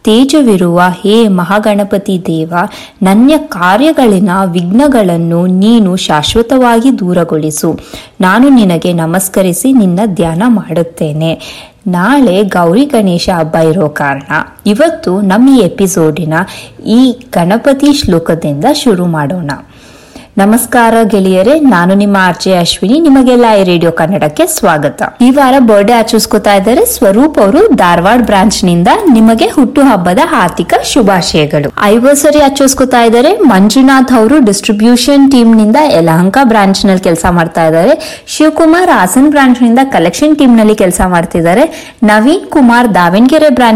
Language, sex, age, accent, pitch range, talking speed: English, female, 20-39, Indian, 180-265 Hz, 70 wpm